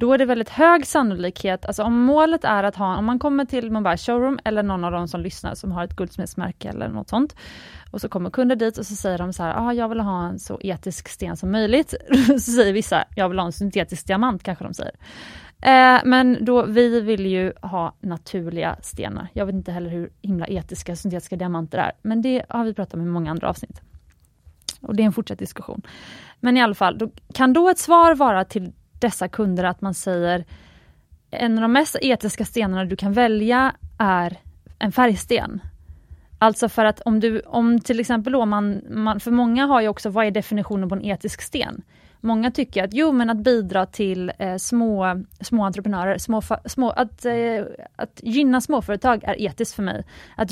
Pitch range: 185-240 Hz